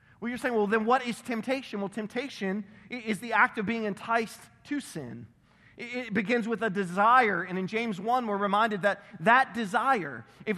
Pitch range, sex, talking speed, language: 180-240 Hz, male, 185 wpm, English